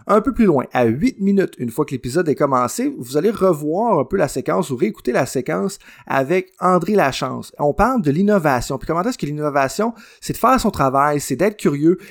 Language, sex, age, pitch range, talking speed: French, male, 30-49, 135-190 Hz, 220 wpm